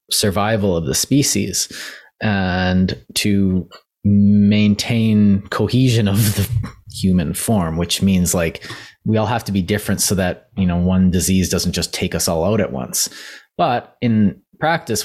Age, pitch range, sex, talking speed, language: 20-39, 95-115 Hz, male, 150 wpm, English